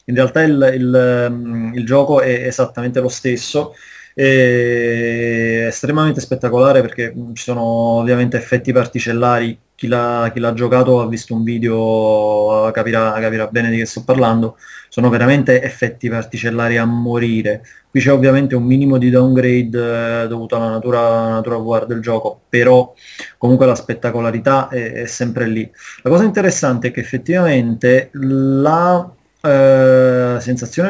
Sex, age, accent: male, 20-39, native